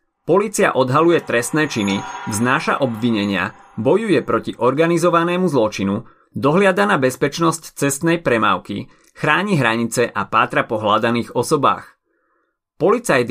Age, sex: 30-49, male